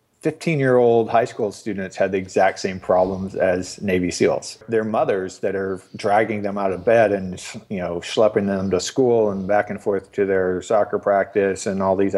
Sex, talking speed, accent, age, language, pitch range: male, 190 wpm, American, 40-59, English, 95-115 Hz